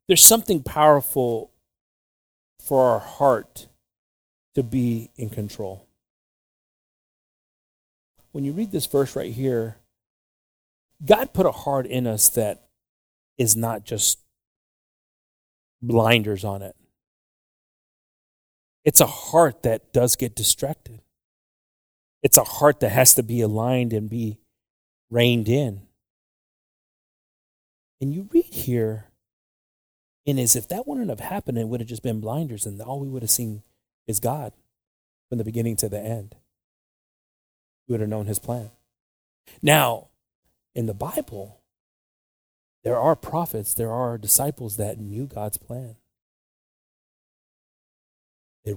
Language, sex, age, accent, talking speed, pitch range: English, male, 30-49, American, 125 wpm, 105-130 Hz